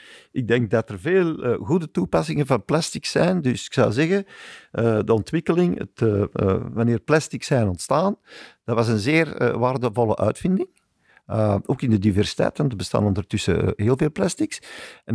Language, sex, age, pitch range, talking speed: Dutch, male, 50-69, 105-155 Hz, 180 wpm